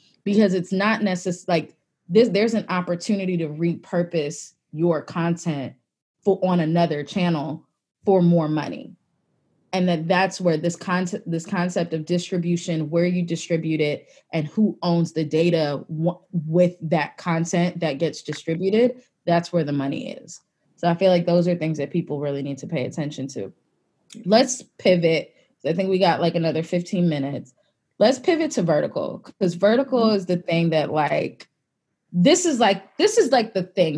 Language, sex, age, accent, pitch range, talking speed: English, female, 20-39, American, 165-200 Hz, 170 wpm